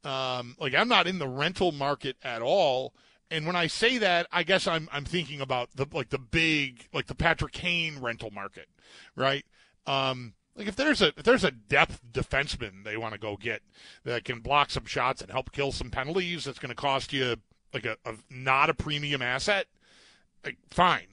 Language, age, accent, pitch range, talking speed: English, 40-59, American, 125-160 Hz, 200 wpm